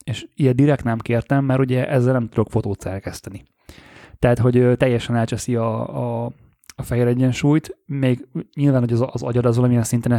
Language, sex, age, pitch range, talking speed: Hungarian, male, 20-39, 110-125 Hz, 175 wpm